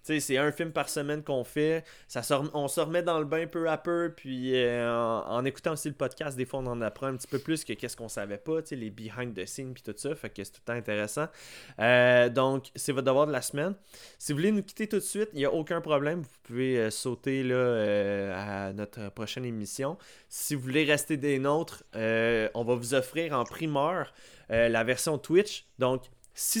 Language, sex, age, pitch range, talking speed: French, male, 20-39, 120-155 Hz, 240 wpm